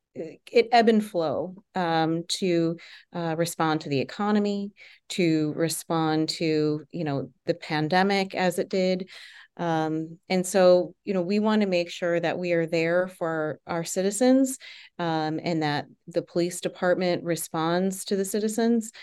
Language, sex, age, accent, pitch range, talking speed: English, female, 30-49, American, 165-195 Hz, 150 wpm